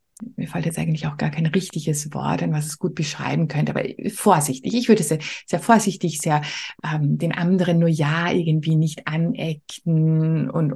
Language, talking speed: German, 180 wpm